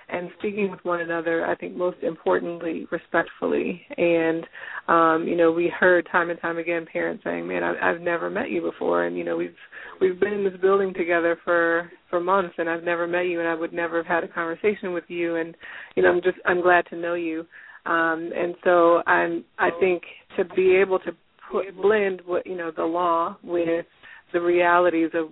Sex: female